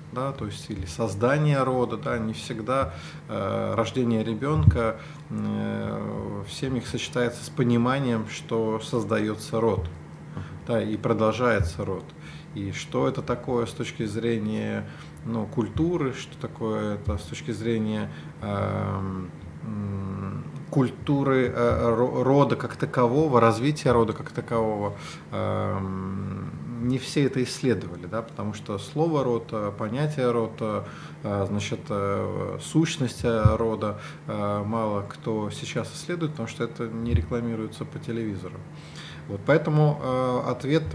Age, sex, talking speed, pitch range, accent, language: 20-39, male, 105 wpm, 105-130 Hz, native, Russian